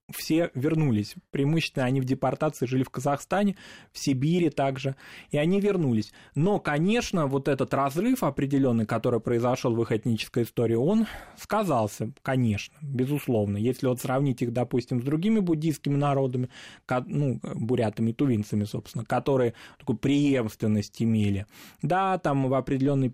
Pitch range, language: 115-145 Hz, Russian